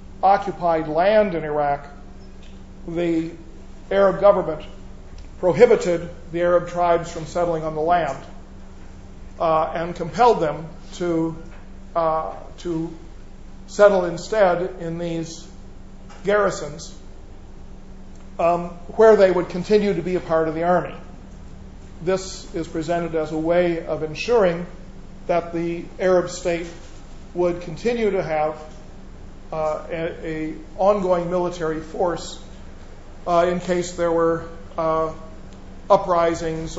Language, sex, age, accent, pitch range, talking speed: Italian, male, 50-69, American, 160-180 Hz, 115 wpm